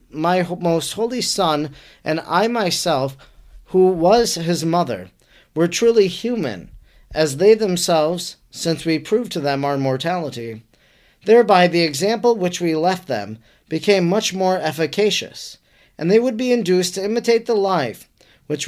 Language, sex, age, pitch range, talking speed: English, male, 40-59, 160-205 Hz, 145 wpm